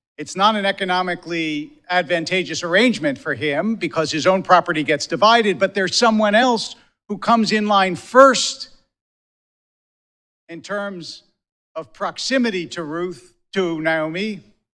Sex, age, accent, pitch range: male, 50-69, American, 160-195 Hz